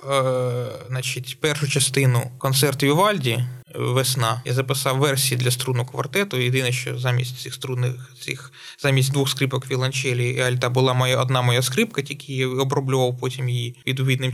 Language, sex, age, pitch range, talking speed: Ukrainian, male, 20-39, 125-150 Hz, 150 wpm